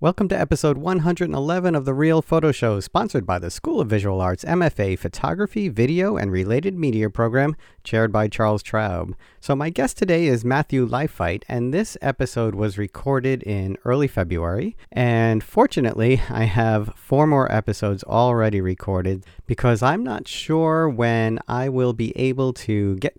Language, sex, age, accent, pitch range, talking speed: English, male, 40-59, American, 100-130 Hz, 160 wpm